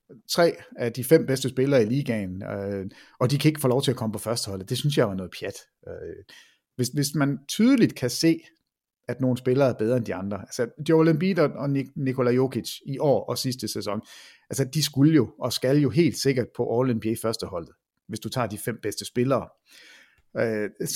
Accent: native